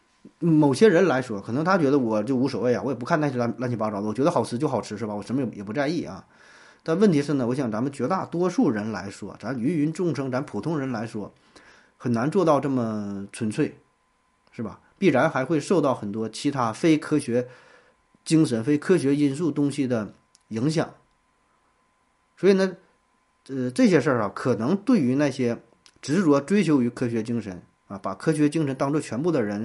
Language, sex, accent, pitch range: Chinese, male, native, 115-150 Hz